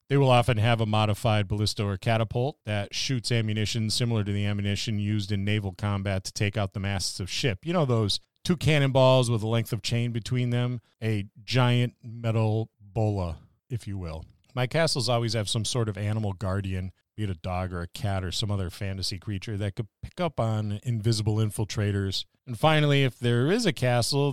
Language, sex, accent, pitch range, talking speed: English, male, American, 100-120 Hz, 200 wpm